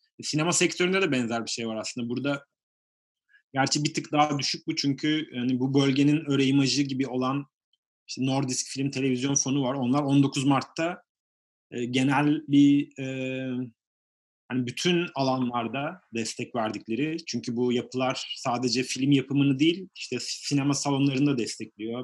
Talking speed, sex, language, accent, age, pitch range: 140 wpm, male, Turkish, native, 30-49, 120-145 Hz